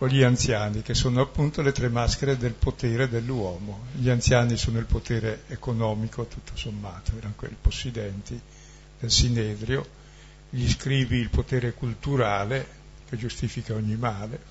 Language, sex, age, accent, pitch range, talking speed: Italian, male, 60-79, native, 115-135 Hz, 140 wpm